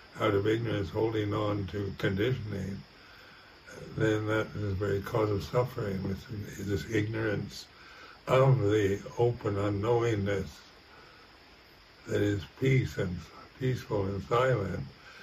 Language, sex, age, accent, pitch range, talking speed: English, male, 60-79, American, 100-120 Hz, 115 wpm